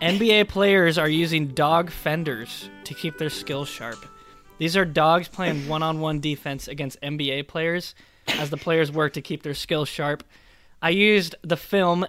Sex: male